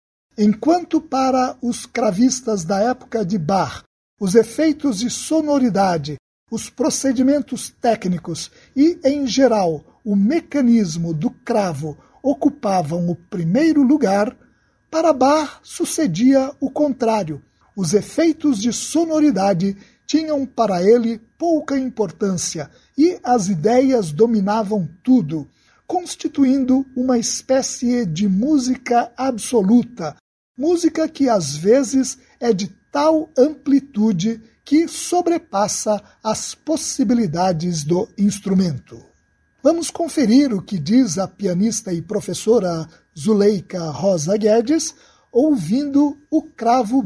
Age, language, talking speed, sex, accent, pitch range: 60-79, Portuguese, 100 wpm, male, Brazilian, 200-275 Hz